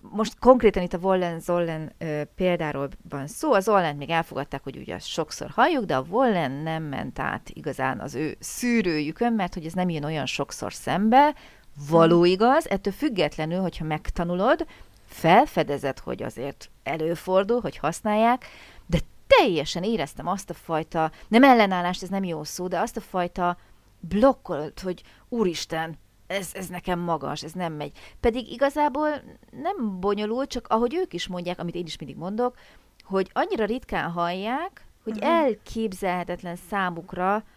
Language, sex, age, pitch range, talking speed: Hungarian, female, 30-49, 165-220 Hz, 150 wpm